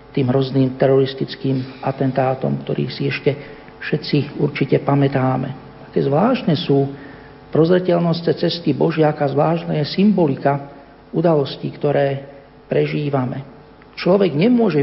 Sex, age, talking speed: male, 50-69, 95 wpm